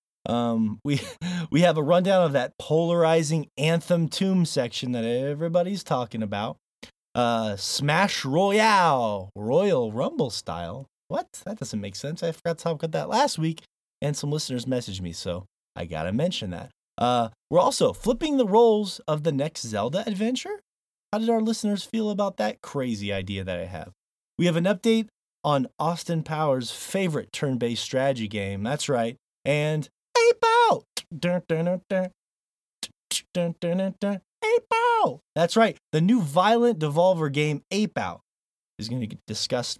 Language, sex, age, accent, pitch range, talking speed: English, male, 20-39, American, 120-185 Hz, 150 wpm